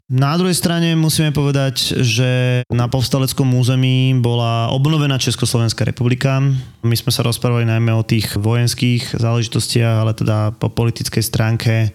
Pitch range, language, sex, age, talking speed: 110-125 Hz, Slovak, male, 20-39, 135 wpm